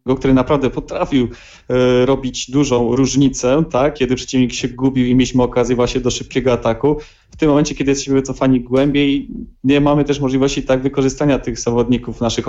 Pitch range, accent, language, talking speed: 125-135 Hz, native, Polish, 170 wpm